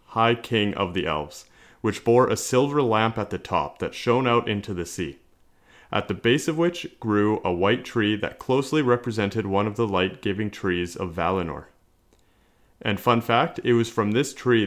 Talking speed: 190 wpm